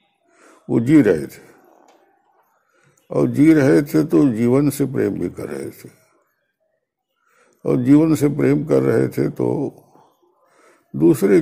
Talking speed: 130 wpm